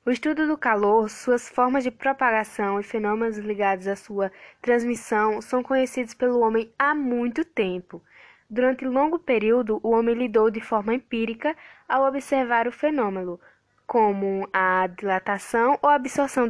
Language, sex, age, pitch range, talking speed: Portuguese, female, 10-29, 210-265 Hz, 145 wpm